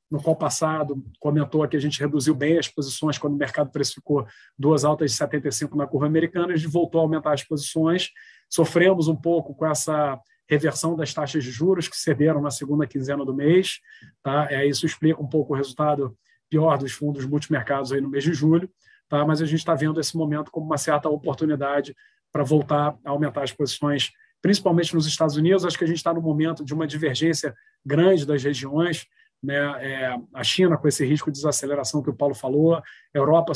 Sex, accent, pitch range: male, Brazilian, 145-160 Hz